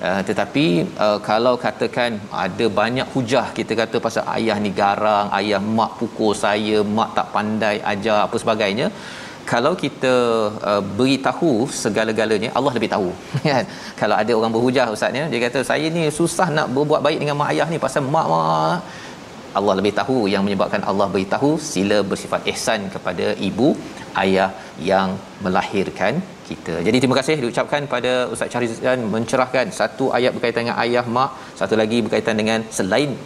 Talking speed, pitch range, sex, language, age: 160 wpm, 105-125 Hz, male, Malayalam, 30-49